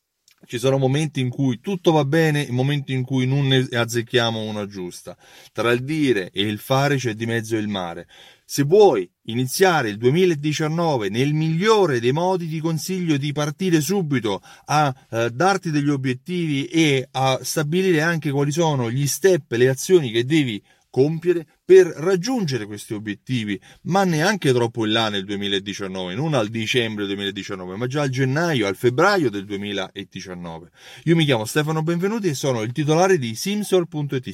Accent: native